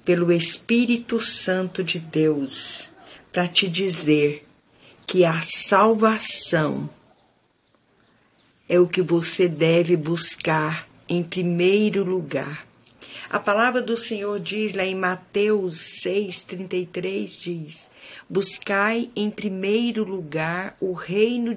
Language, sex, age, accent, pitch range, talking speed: Portuguese, female, 50-69, Brazilian, 170-220 Hz, 105 wpm